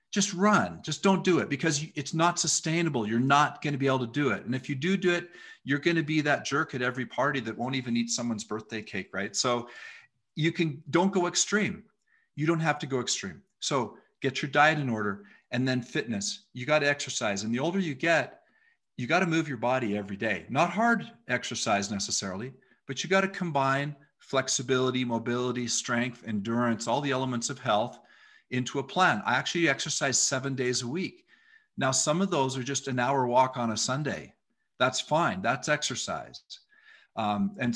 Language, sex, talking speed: English, male, 200 wpm